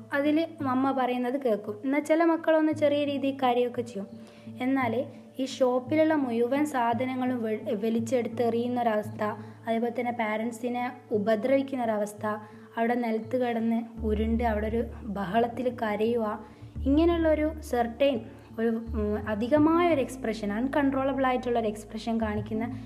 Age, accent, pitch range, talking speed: 20-39, native, 225-275 Hz, 100 wpm